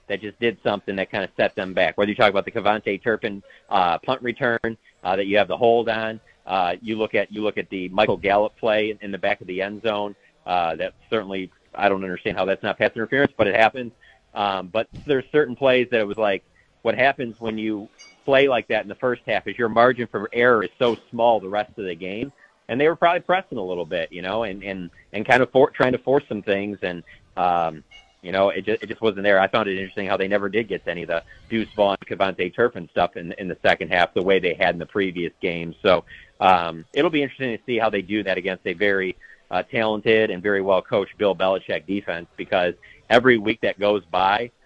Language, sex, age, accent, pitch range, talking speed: English, male, 40-59, American, 95-115 Hz, 245 wpm